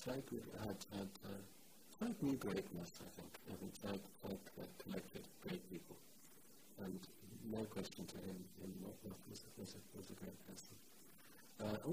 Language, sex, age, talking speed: English, male, 50-69, 150 wpm